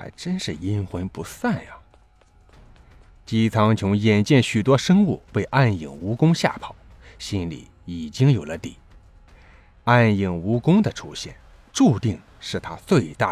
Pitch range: 90-135 Hz